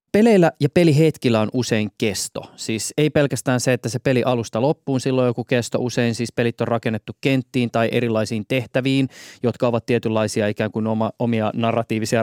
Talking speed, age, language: 165 wpm, 20-39, Finnish